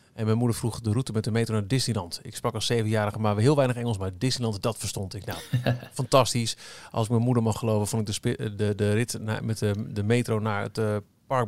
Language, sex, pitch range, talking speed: Dutch, male, 105-125 Hz, 250 wpm